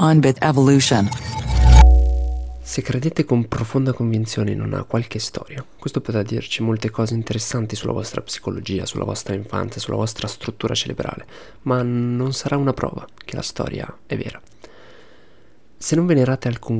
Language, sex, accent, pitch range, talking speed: Italian, male, native, 110-135 Hz, 140 wpm